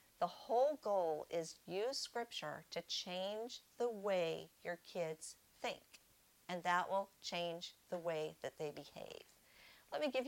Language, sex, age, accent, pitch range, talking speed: English, female, 50-69, American, 175-215 Hz, 145 wpm